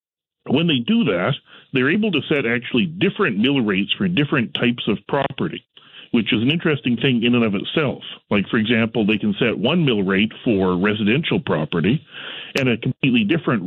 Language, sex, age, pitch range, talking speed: English, male, 40-59, 105-140 Hz, 185 wpm